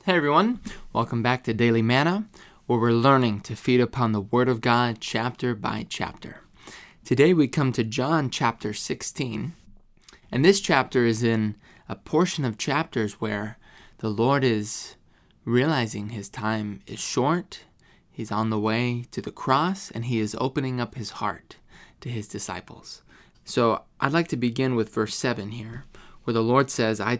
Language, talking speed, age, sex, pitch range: English, 170 wpm, 20-39, male, 110-135 Hz